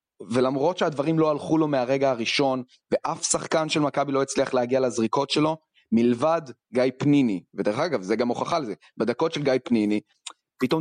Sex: male